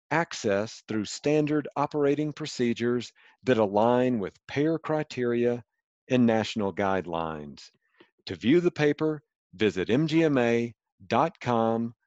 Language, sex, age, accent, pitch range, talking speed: English, male, 50-69, American, 120-155 Hz, 95 wpm